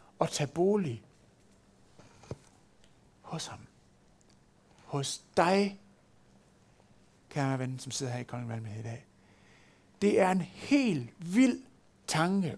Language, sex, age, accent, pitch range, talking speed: Danish, male, 60-79, native, 155-215 Hz, 110 wpm